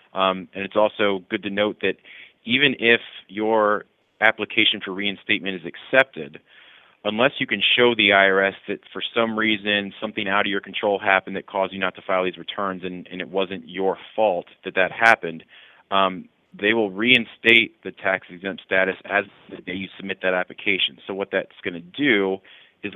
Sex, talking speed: male, 185 wpm